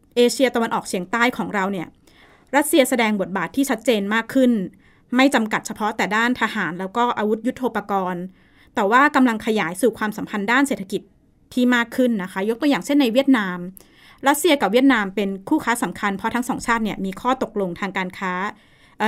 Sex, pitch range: female, 200-250 Hz